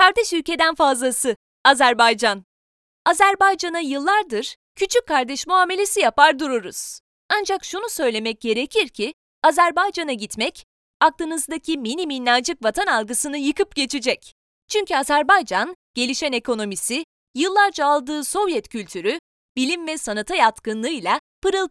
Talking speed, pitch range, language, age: 105 wpm, 250-360 Hz, Turkish, 30-49